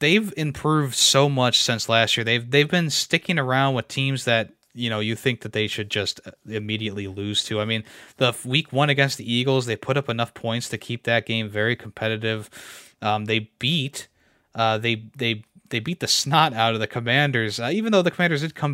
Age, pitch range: 20-39, 115-145 Hz